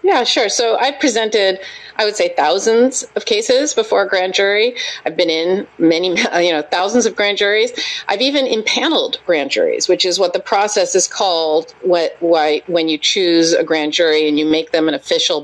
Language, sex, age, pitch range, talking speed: English, female, 40-59, 165-240 Hz, 190 wpm